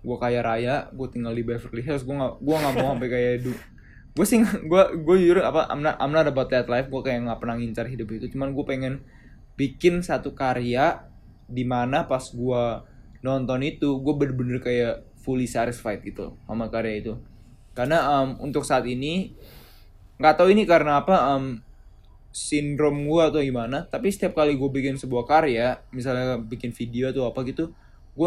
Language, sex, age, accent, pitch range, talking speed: Indonesian, male, 20-39, native, 125-160 Hz, 170 wpm